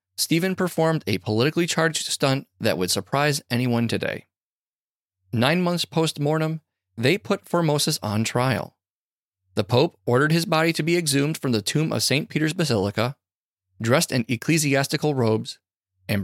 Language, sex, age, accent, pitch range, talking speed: English, male, 30-49, American, 105-155 Hz, 145 wpm